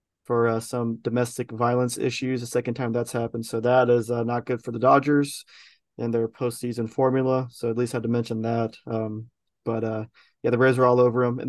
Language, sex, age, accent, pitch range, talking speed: English, male, 20-39, American, 120-135 Hz, 220 wpm